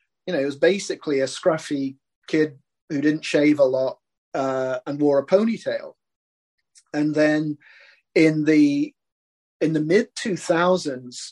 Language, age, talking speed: English, 40-59, 135 wpm